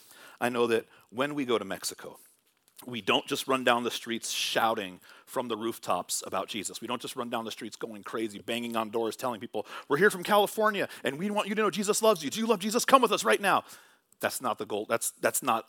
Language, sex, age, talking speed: English, male, 40-59, 245 wpm